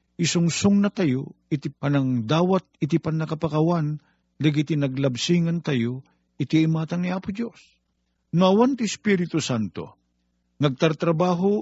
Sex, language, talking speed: male, Filipino, 115 wpm